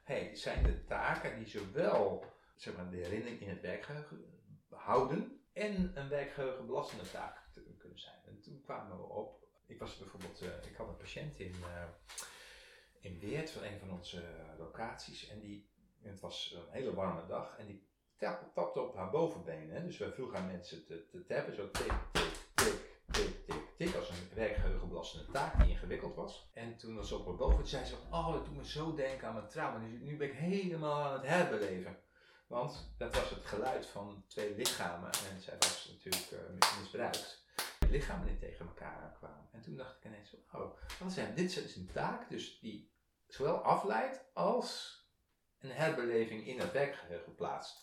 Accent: Dutch